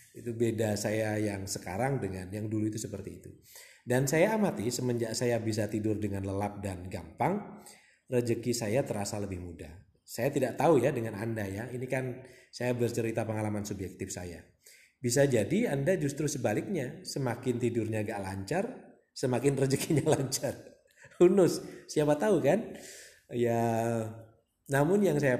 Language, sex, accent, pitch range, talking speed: Indonesian, male, native, 105-135 Hz, 145 wpm